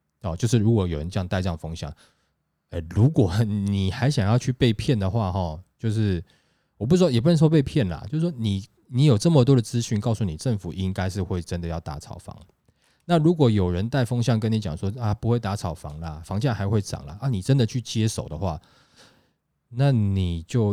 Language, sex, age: Chinese, male, 20-39